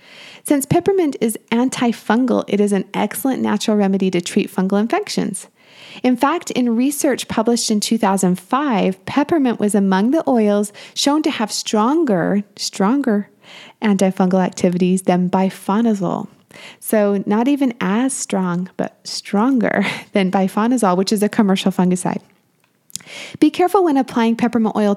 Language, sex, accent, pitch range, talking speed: English, female, American, 195-230 Hz, 130 wpm